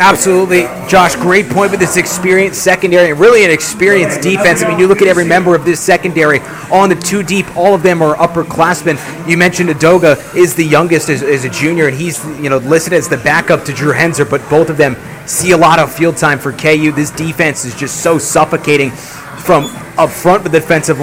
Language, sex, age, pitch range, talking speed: English, male, 30-49, 145-175 Hz, 220 wpm